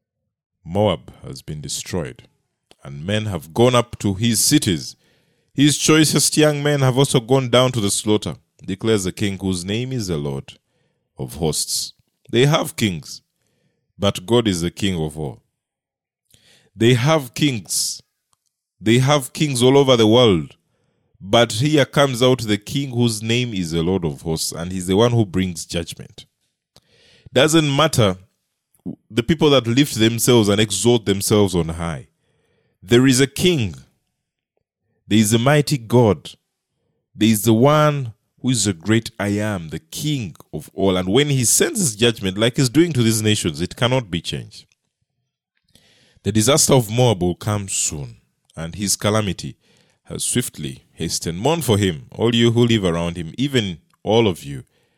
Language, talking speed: English, 165 wpm